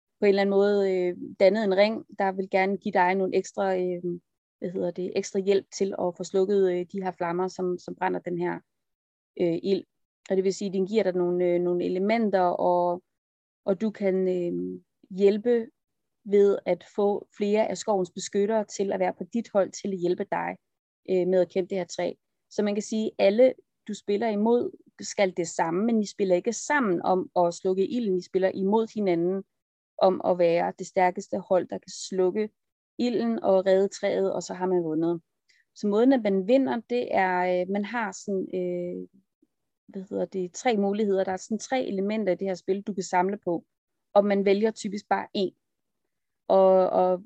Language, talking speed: Danish, 190 wpm